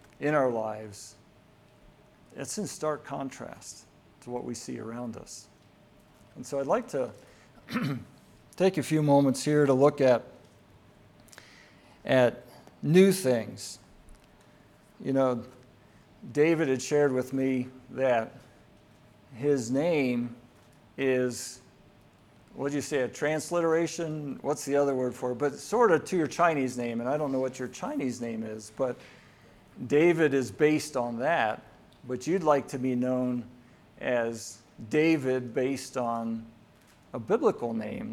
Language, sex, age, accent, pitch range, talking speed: English, male, 50-69, American, 120-140 Hz, 135 wpm